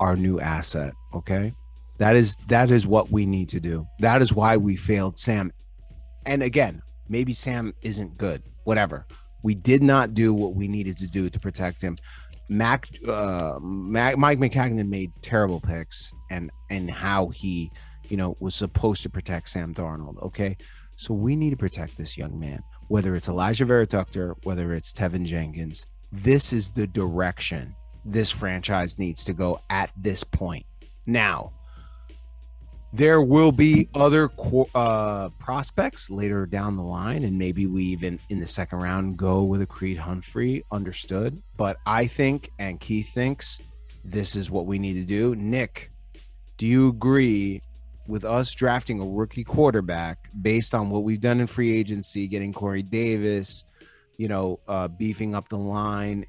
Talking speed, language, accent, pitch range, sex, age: 165 wpm, English, American, 90-110 Hz, male, 30-49